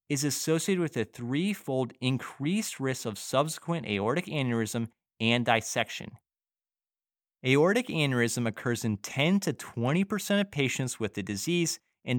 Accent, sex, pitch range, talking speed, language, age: American, male, 115-165 Hz, 130 wpm, English, 30-49